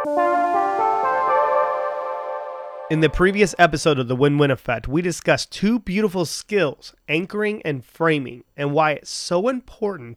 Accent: American